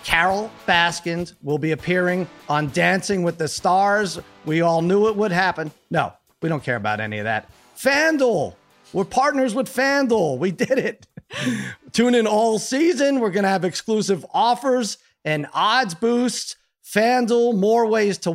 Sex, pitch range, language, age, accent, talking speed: male, 160-215 Hz, English, 30-49, American, 160 wpm